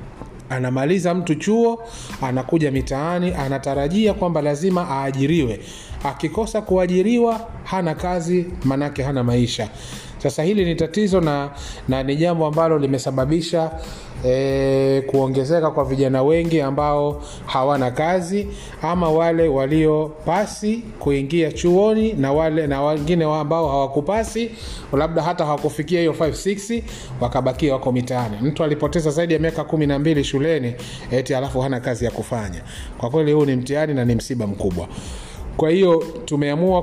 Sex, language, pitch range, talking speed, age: male, Swahili, 130-165 Hz, 130 wpm, 30-49